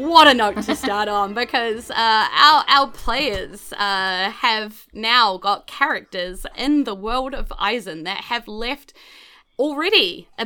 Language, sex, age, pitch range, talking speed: English, female, 20-39, 190-265 Hz, 150 wpm